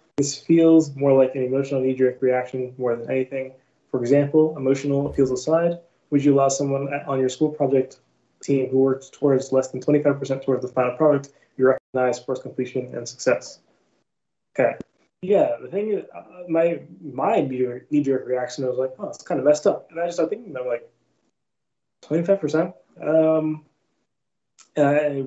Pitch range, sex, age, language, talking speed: 125-150 Hz, male, 20-39, English, 165 wpm